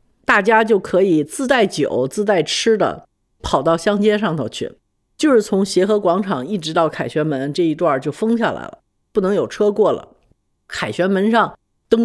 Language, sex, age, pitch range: Chinese, female, 50-69, 180-255 Hz